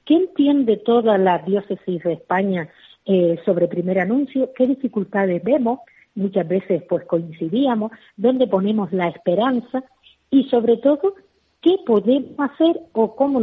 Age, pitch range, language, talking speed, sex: 40-59, 180-245 Hz, Spanish, 130 wpm, female